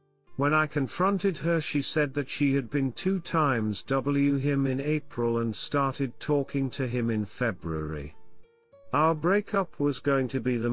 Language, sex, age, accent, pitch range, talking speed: English, male, 50-69, British, 110-150 Hz, 170 wpm